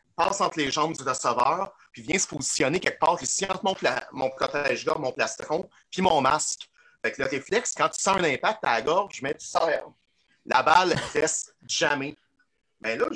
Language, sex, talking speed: French, male, 195 wpm